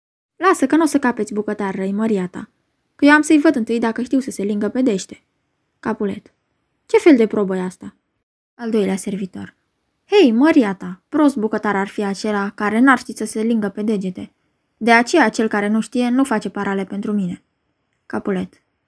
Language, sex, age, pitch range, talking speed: Romanian, female, 20-39, 205-265 Hz, 185 wpm